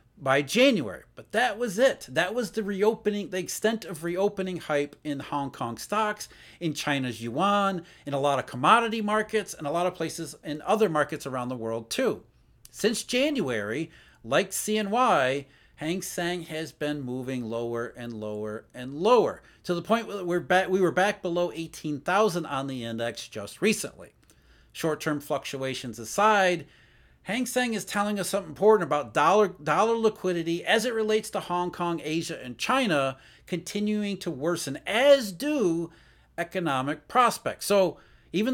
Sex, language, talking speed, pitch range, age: male, English, 155 wpm, 145-210 Hz, 40-59